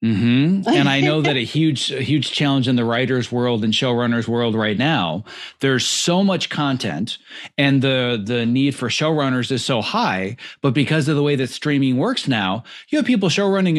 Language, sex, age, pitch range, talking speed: English, male, 30-49, 115-145 Hz, 195 wpm